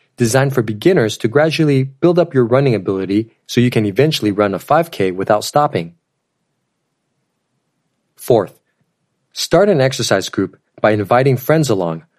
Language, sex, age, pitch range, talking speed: English, male, 40-59, 105-140 Hz, 140 wpm